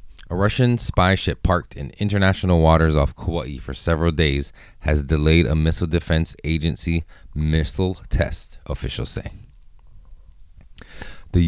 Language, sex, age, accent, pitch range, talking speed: English, male, 20-39, American, 80-95 Hz, 125 wpm